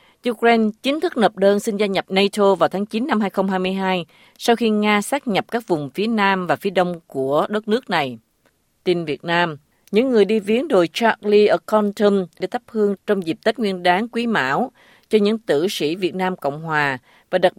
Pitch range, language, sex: 160-220 Hz, Vietnamese, female